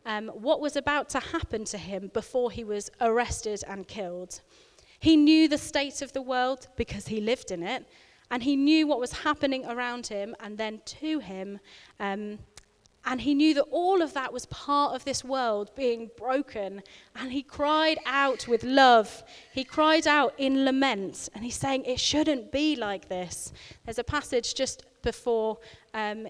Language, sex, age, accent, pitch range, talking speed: English, female, 30-49, British, 215-280 Hz, 180 wpm